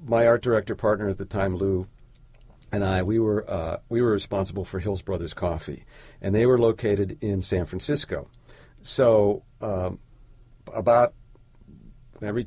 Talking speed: 150 wpm